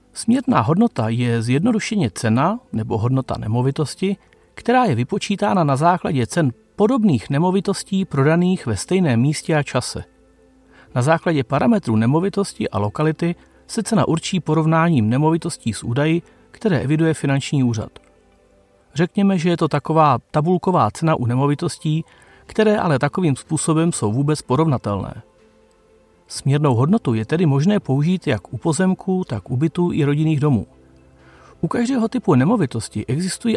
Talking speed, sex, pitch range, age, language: 135 wpm, male, 120-180 Hz, 40-59, Czech